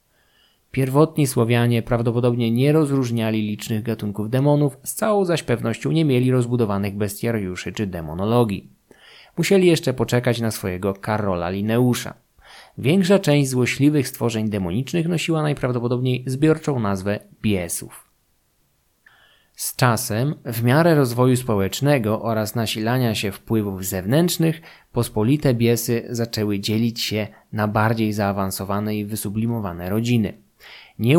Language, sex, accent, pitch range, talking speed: Polish, male, native, 105-125 Hz, 110 wpm